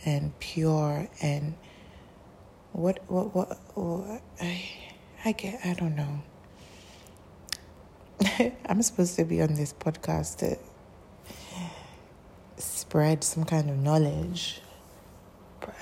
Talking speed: 105 wpm